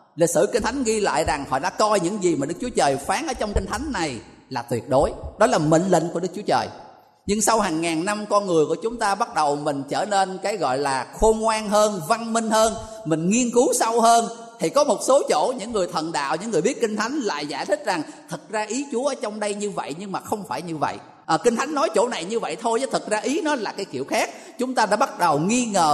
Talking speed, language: 280 wpm, Vietnamese